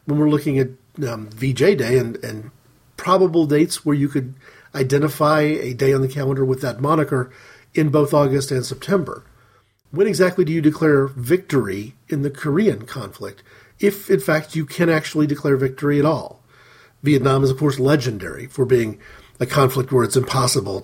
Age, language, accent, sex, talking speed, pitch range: 40-59, English, American, male, 175 wpm, 125-155 Hz